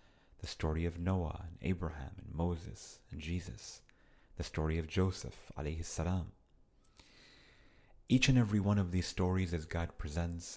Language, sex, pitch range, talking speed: English, male, 85-100 Hz, 135 wpm